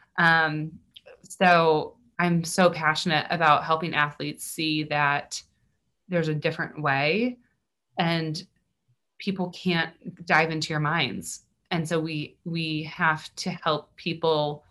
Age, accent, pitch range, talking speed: 20-39, American, 155-180 Hz, 120 wpm